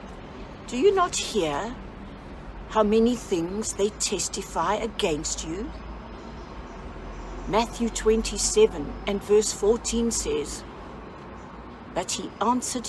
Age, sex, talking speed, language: 60-79, female, 95 wpm, English